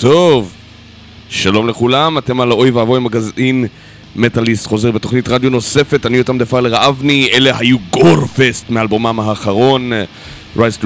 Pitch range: 105-130 Hz